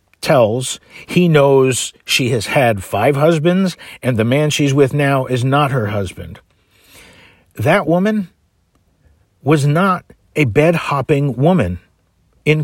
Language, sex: English, male